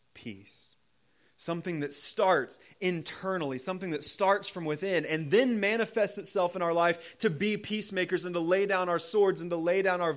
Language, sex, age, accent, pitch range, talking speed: English, male, 30-49, American, 130-190 Hz, 185 wpm